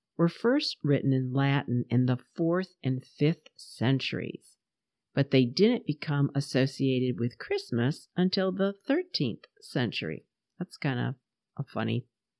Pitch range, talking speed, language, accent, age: 130-170 Hz, 130 wpm, English, American, 50-69